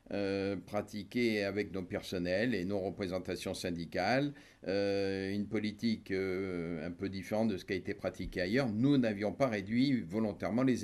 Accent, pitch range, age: French, 95-120 Hz, 50-69